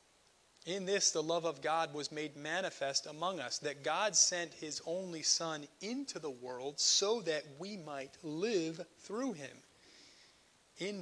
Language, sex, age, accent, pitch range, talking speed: English, male, 30-49, American, 135-170 Hz, 150 wpm